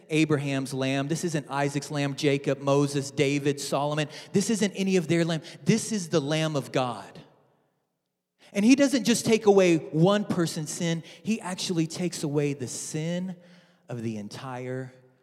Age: 30-49